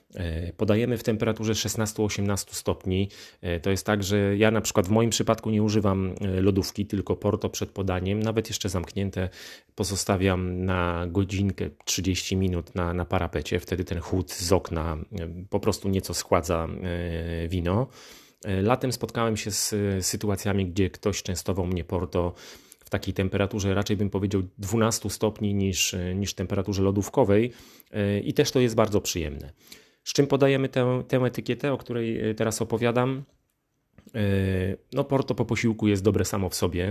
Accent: native